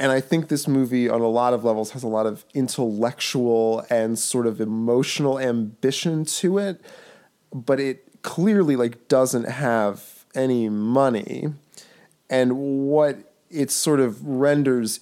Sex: male